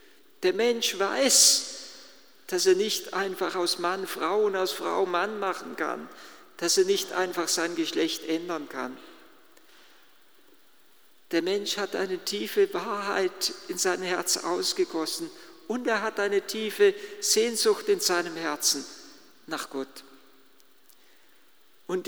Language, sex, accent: German, male, German